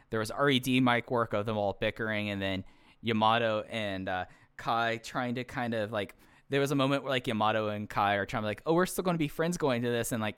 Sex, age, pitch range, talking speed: male, 10-29, 100-125 Hz, 265 wpm